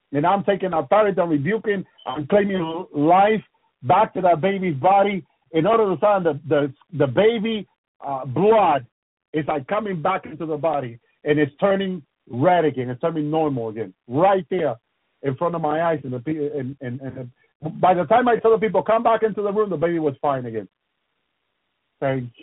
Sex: male